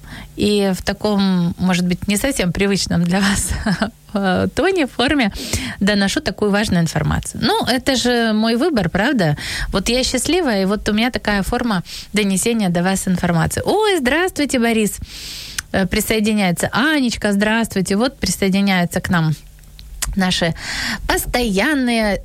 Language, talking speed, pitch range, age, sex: Ukrainian, 125 wpm, 185-245 Hz, 20-39, female